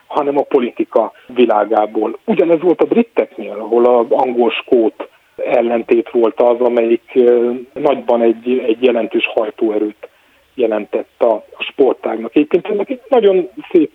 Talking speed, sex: 120 wpm, male